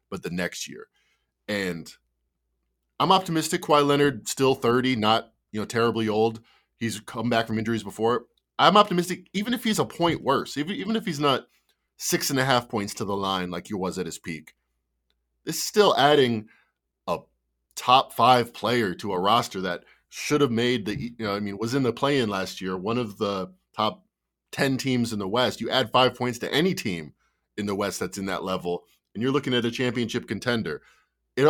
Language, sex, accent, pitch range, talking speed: English, male, American, 95-135 Hz, 200 wpm